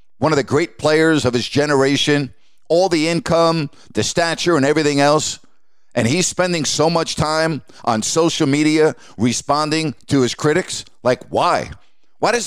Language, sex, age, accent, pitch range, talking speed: English, male, 50-69, American, 140-190 Hz, 160 wpm